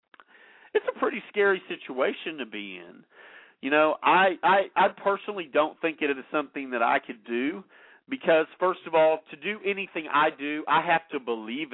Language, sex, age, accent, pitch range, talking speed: English, male, 40-59, American, 130-185 Hz, 185 wpm